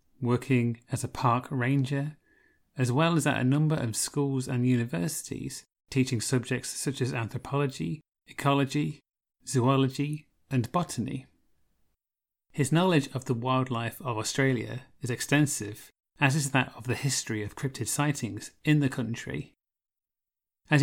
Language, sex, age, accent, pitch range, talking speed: English, male, 30-49, British, 120-140 Hz, 135 wpm